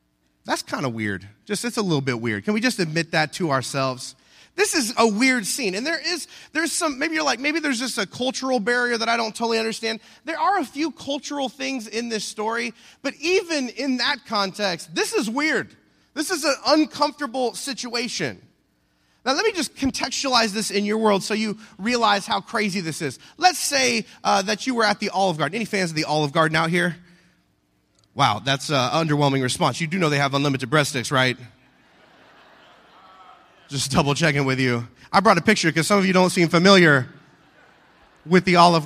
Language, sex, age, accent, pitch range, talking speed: English, male, 30-49, American, 155-245 Hz, 200 wpm